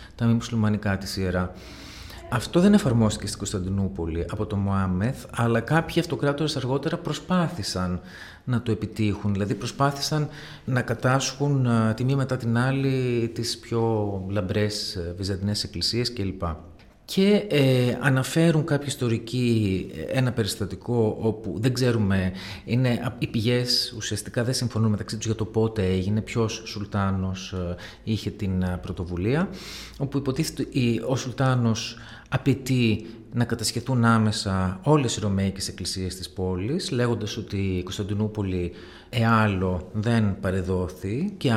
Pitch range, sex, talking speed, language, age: 95-125 Hz, male, 125 wpm, Greek, 40-59